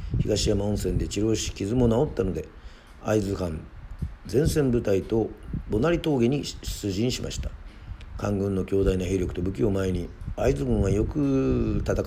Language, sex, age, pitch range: Japanese, male, 40-59, 90-110 Hz